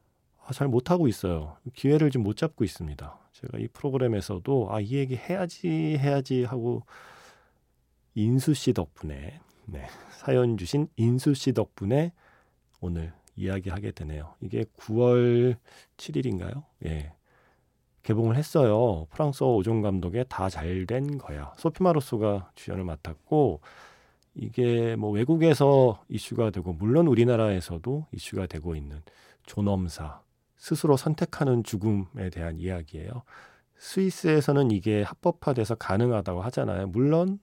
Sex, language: male, Korean